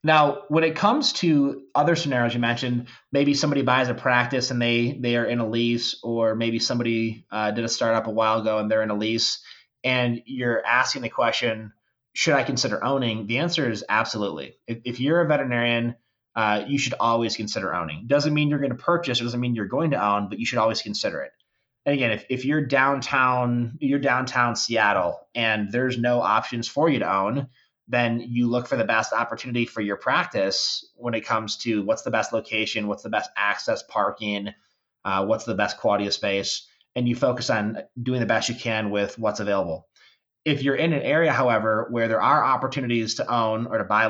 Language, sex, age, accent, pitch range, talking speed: English, male, 20-39, American, 110-130 Hz, 210 wpm